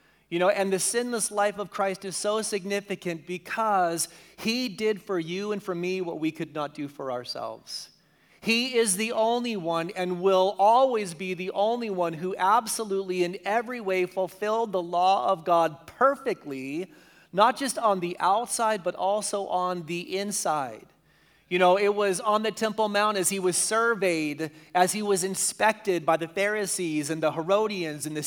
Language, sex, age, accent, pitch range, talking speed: English, male, 30-49, American, 170-210 Hz, 175 wpm